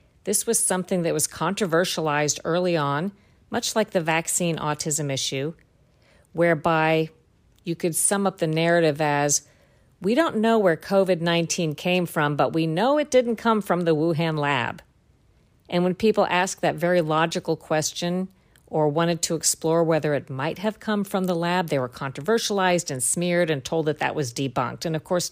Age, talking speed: 50-69, 175 wpm